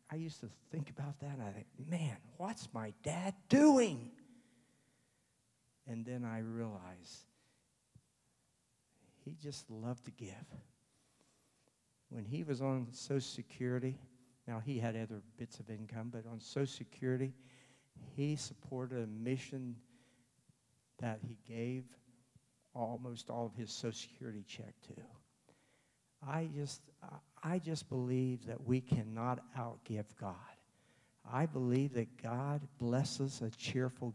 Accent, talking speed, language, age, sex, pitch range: American, 125 wpm, English, 50-69, male, 115-140 Hz